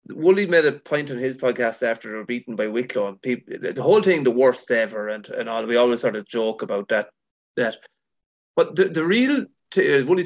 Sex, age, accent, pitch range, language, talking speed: male, 30-49, Irish, 115-160 Hz, English, 220 wpm